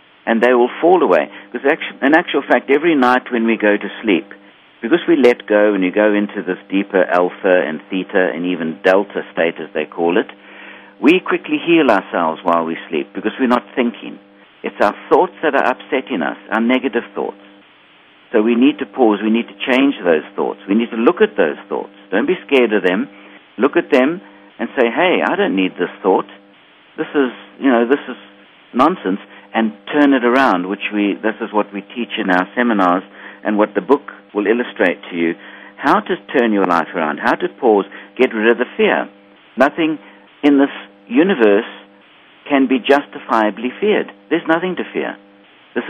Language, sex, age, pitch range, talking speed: English, male, 60-79, 100-130 Hz, 195 wpm